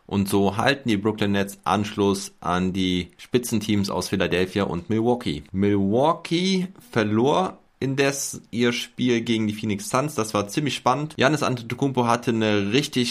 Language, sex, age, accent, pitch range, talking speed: German, male, 20-39, German, 100-120 Hz, 145 wpm